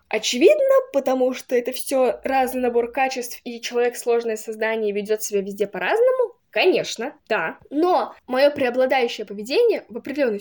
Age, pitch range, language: 10-29, 225-330 Hz, Russian